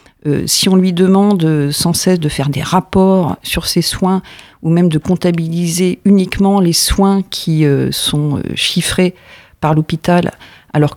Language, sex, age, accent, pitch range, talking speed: French, female, 50-69, French, 155-185 Hz, 155 wpm